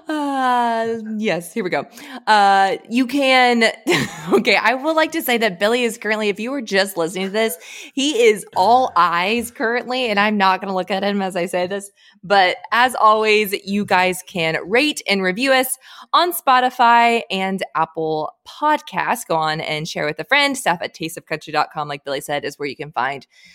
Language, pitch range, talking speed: English, 180-240 Hz, 190 wpm